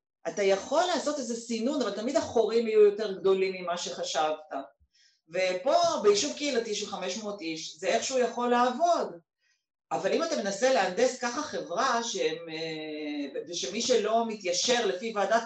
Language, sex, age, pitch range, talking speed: Hebrew, female, 40-59, 185-240 Hz, 135 wpm